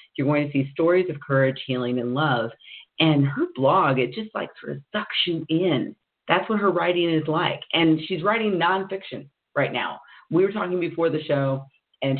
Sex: female